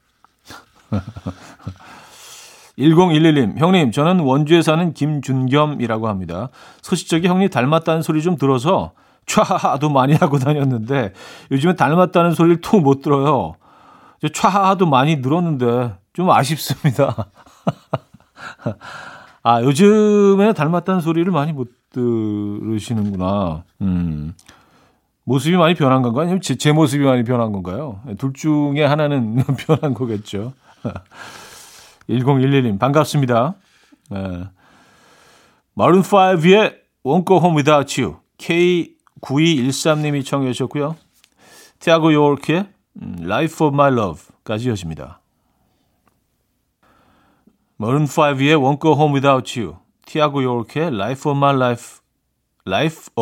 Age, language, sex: 40-59, Korean, male